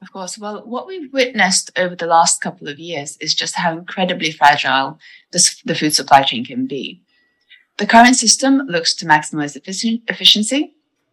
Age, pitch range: 30-49, 155-215 Hz